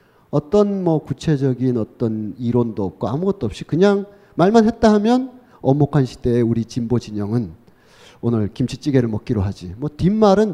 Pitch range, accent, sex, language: 115-185 Hz, native, male, Korean